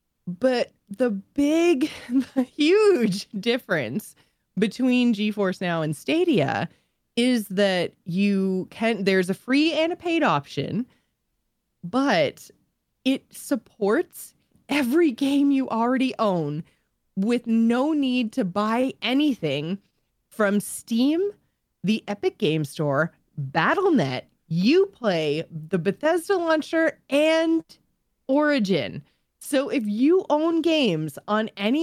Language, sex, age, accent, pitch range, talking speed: English, female, 20-39, American, 175-260 Hz, 105 wpm